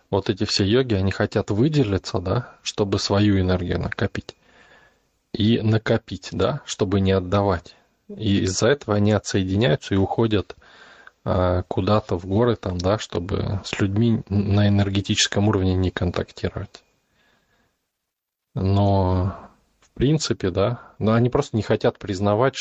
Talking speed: 130 wpm